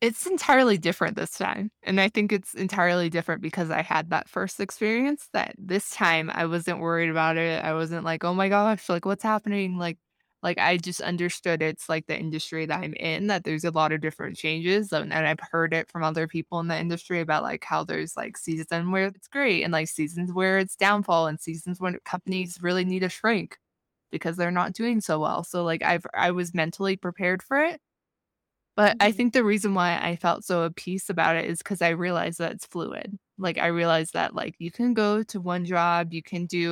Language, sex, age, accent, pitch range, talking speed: English, female, 20-39, American, 160-190 Hz, 220 wpm